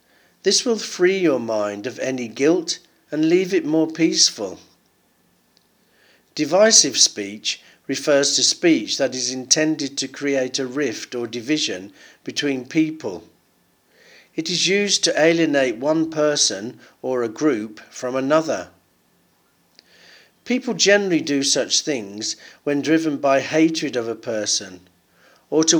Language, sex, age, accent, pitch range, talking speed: English, male, 50-69, British, 130-170 Hz, 130 wpm